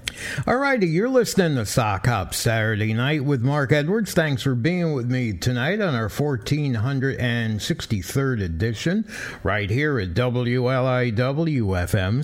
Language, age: English, 60-79